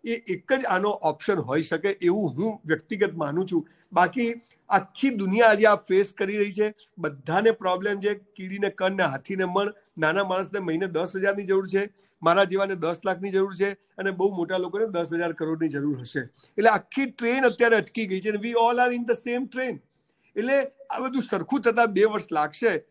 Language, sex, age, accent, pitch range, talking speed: Gujarati, male, 50-69, native, 180-220 Hz, 70 wpm